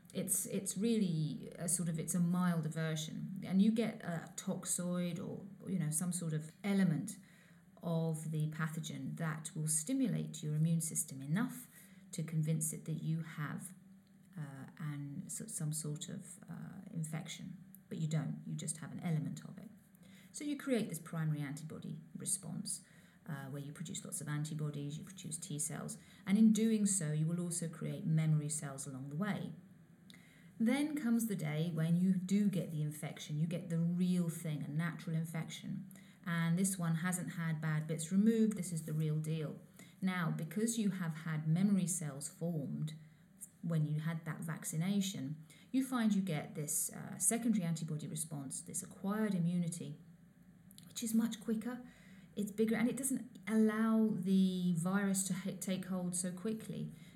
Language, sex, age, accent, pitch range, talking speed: English, female, 40-59, British, 160-195 Hz, 165 wpm